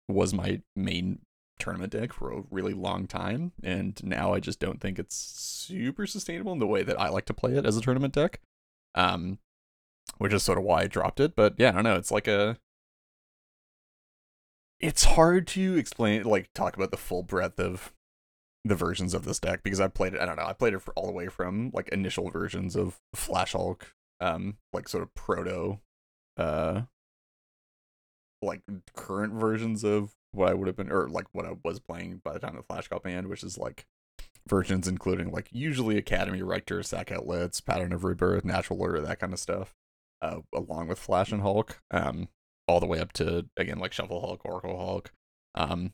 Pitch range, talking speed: 85-105 Hz, 200 wpm